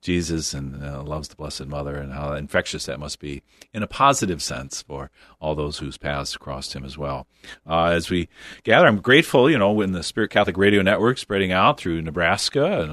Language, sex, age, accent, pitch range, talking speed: English, male, 40-59, American, 80-100 Hz, 210 wpm